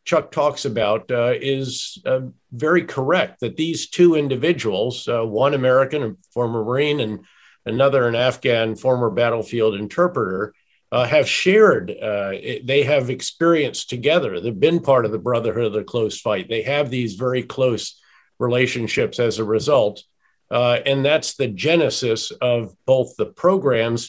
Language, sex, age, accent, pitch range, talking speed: English, male, 50-69, American, 115-145 Hz, 155 wpm